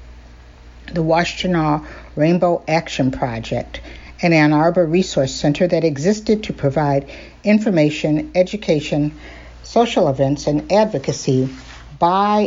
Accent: American